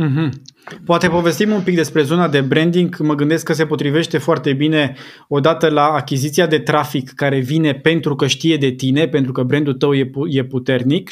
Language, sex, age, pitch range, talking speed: Romanian, male, 20-39, 135-160 Hz, 180 wpm